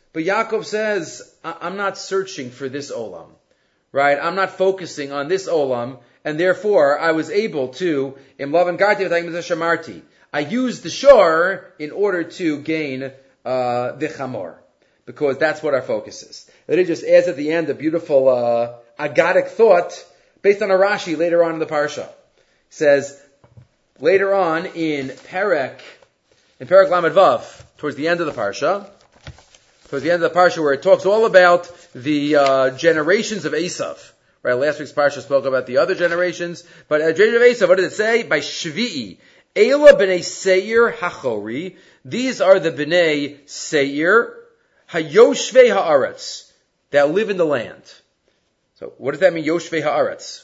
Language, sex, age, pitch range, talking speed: English, male, 30-49, 150-205 Hz, 160 wpm